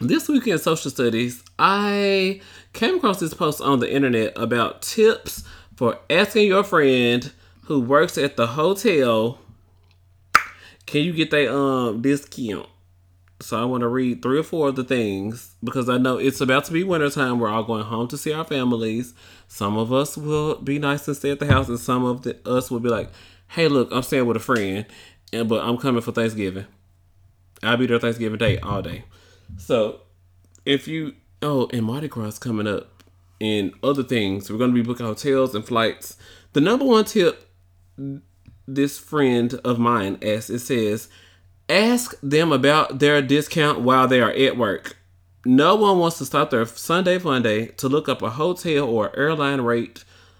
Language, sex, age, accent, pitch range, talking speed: English, male, 30-49, American, 105-140 Hz, 180 wpm